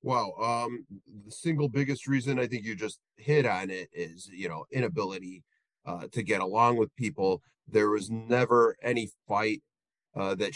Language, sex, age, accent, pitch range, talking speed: English, male, 30-49, American, 105-130 Hz, 175 wpm